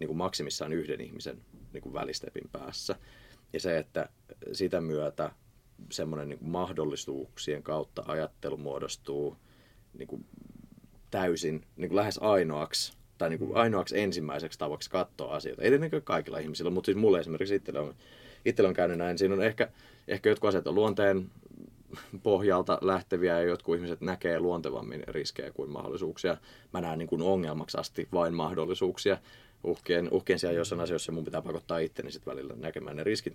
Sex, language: male, Finnish